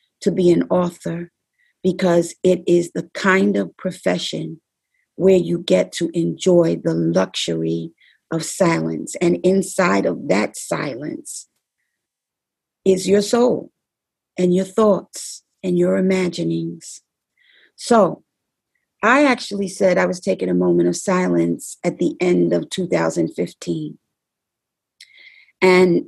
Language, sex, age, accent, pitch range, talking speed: English, female, 50-69, American, 160-190 Hz, 115 wpm